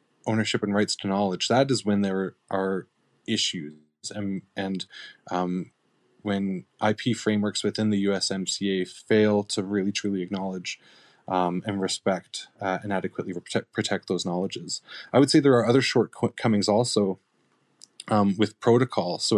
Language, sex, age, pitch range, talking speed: English, male, 20-39, 95-110 Hz, 145 wpm